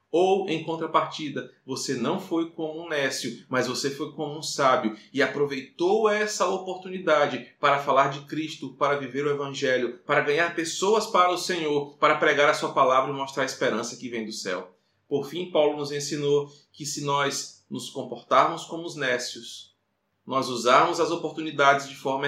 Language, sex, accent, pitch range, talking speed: Portuguese, male, Brazilian, 130-165 Hz, 175 wpm